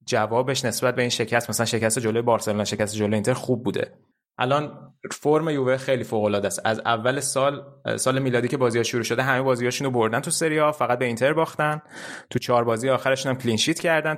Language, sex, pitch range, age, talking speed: Persian, male, 110-135 Hz, 20-39, 205 wpm